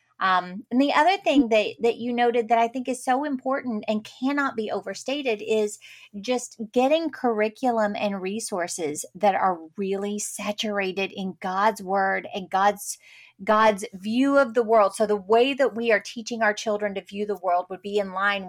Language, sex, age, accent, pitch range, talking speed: English, female, 30-49, American, 200-250 Hz, 180 wpm